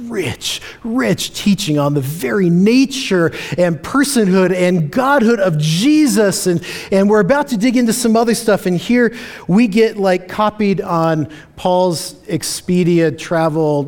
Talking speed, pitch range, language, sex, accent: 145 wpm, 165-225 Hz, English, male, American